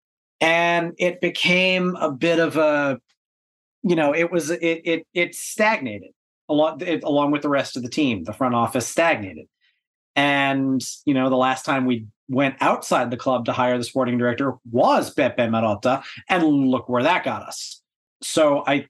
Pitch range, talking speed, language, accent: 115-145 Hz, 175 wpm, English, American